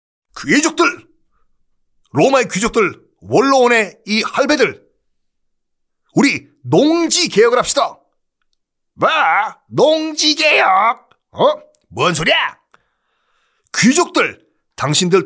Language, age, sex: Korean, 40-59, male